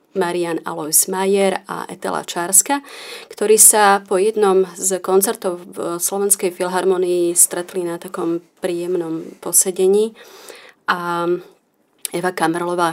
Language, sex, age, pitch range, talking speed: Slovak, female, 30-49, 175-200 Hz, 105 wpm